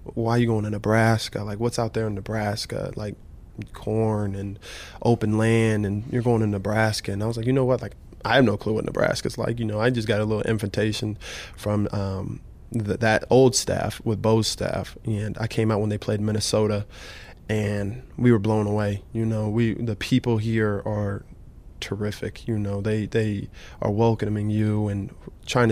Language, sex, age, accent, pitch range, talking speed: English, male, 20-39, American, 105-115 Hz, 195 wpm